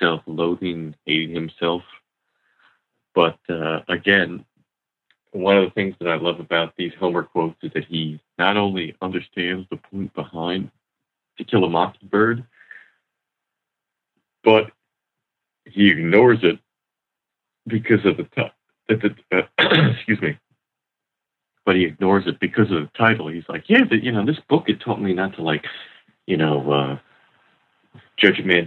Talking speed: 145 wpm